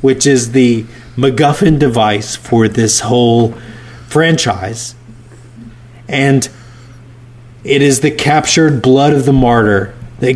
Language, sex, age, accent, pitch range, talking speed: English, male, 30-49, American, 120-145 Hz, 110 wpm